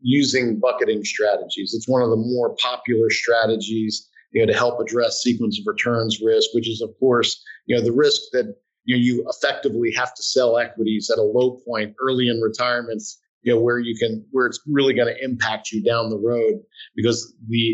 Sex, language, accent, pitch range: male, English, American, 115-180 Hz